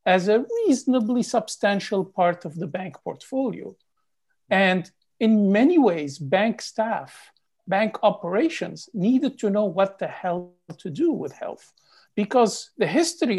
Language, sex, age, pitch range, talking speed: English, male, 50-69, 175-225 Hz, 135 wpm